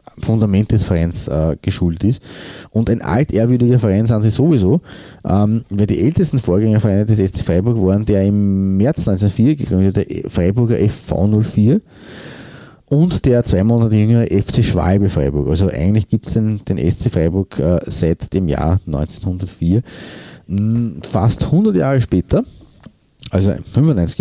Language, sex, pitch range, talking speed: German, male, 95-120 Hz, 140 wpm